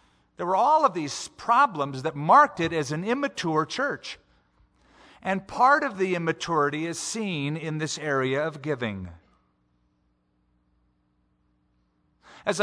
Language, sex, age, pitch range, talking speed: English, male, 50-69, 110-165 Hz, 125 wpm